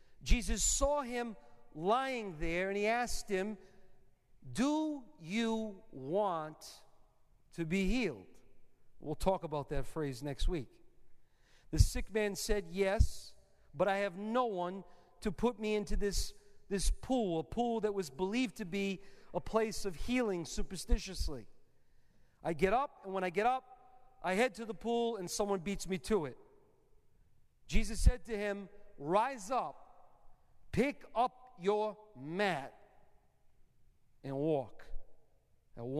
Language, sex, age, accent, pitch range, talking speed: English, male, 40-59, American, 135-210 Hz, 140 wpm